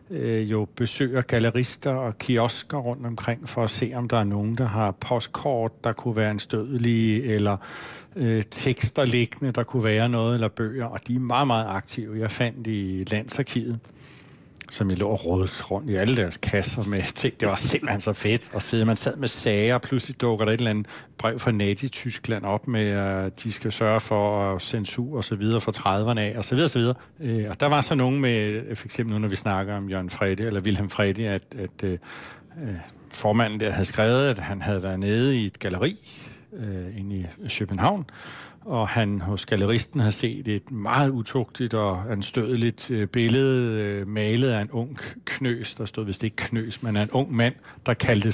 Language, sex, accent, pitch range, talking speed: Danish, male, native, 105-125 Hz, 205 wpm